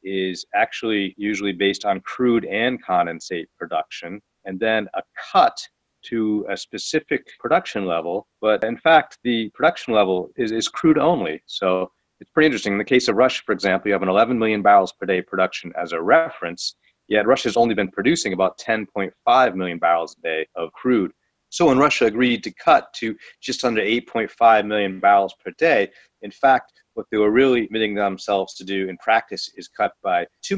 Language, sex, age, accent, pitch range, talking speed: English, male, 40-59, American, 95-115 Hz, 185 wpm